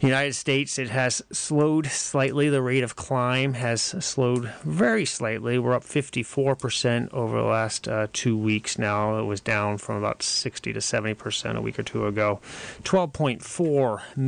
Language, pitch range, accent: English, 105-135 Hz, American